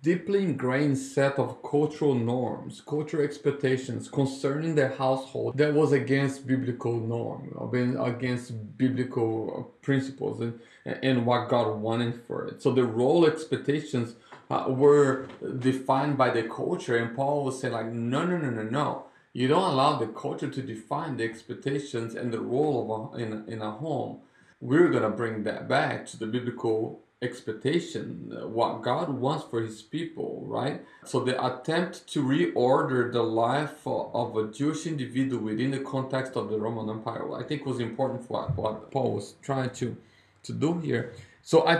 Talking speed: 165 wpm